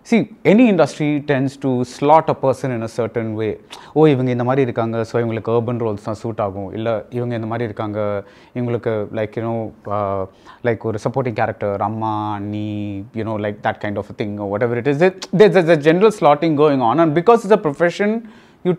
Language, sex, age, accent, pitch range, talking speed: English, male, 30-49, Indian, 115-175 Hz, 205 wpm